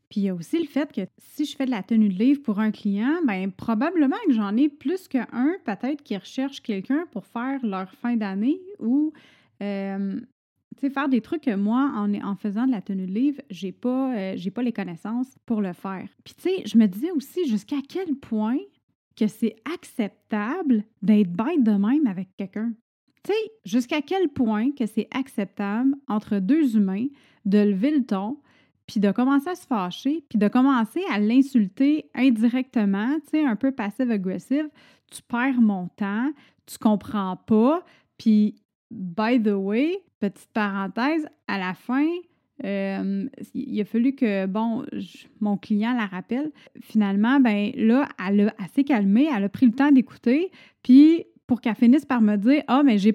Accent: Canadian